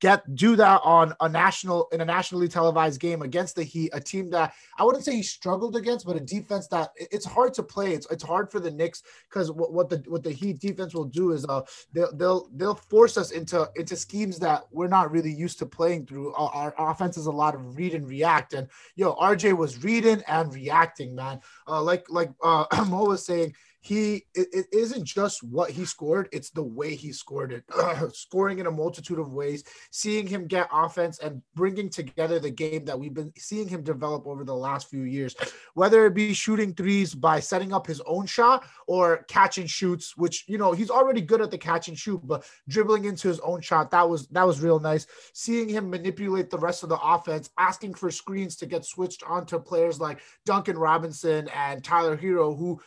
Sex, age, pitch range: male, 20-39, 160-195 Hz